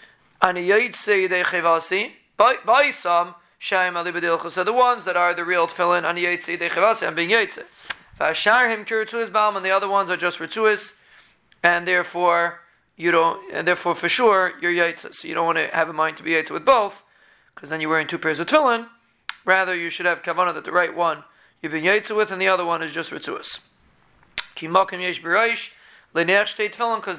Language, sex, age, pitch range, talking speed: English, male, 30-49, 170-200 Hz, 155 wpm